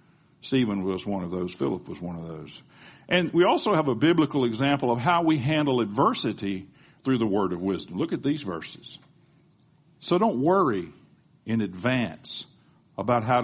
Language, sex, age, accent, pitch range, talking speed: English, male, 60-79, American, 95-150 Hz, 170 wpm